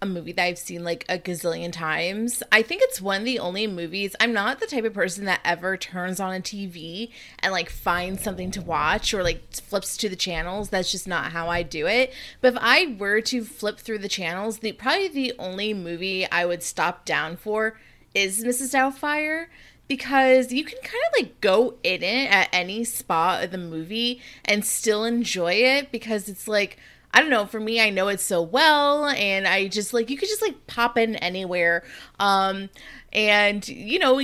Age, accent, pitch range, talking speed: 20-39, American, 185-245 Hz, 205 wpm